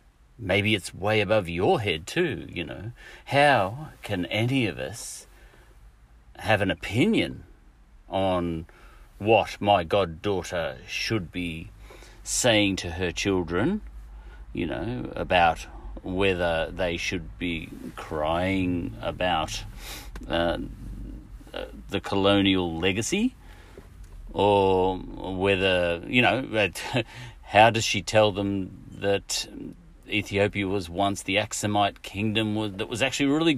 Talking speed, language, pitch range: 110 wpm, English, 85-105 Hz